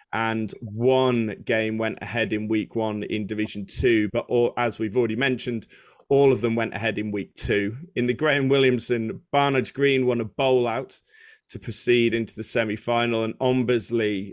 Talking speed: 175 wpm